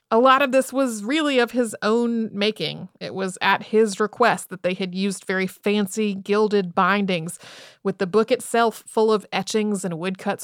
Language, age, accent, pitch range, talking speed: English, 30-49, American, 190-240 Hz, 185 wpm